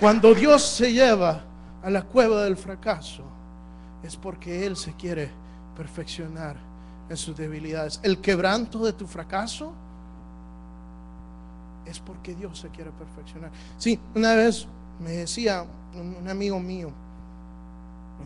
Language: Spanish